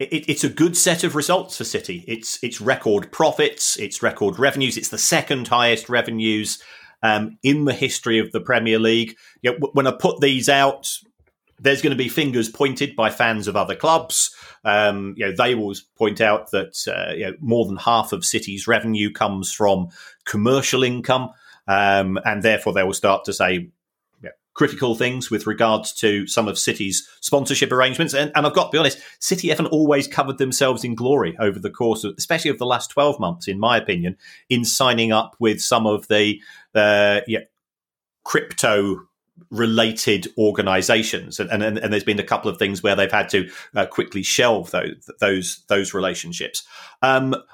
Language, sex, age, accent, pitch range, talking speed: English, male, 30-49, British, 110-140 Hz, 180 wpm